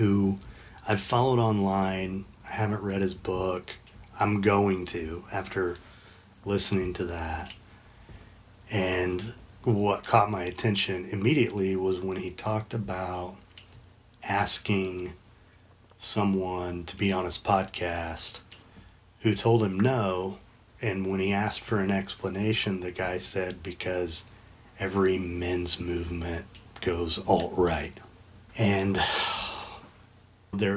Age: 40-59